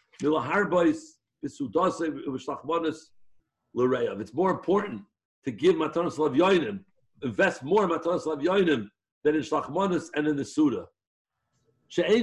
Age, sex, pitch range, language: 60-79, male, 150-210 Hz, English